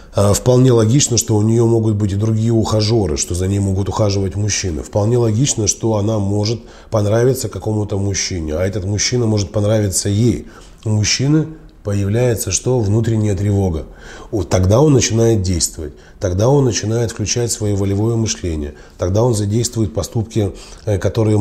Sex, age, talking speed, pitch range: male, 20-39, 145 wpm, 95-115 Hz